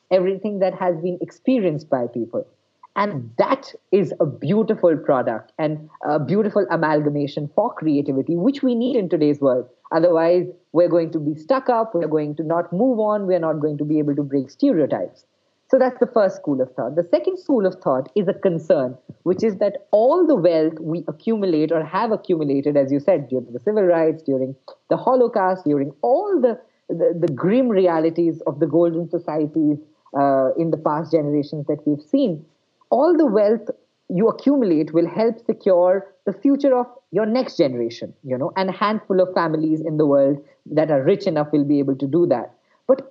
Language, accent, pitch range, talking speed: English, Indian, 155-225 Hz, 190 wpm